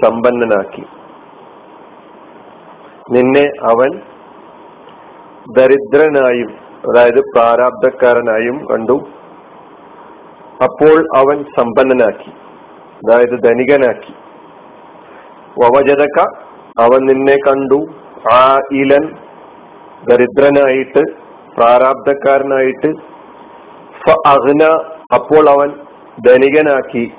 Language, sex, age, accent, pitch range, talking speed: Malayalam, male, 50-69, native, 125-145 Hz, 50 wpm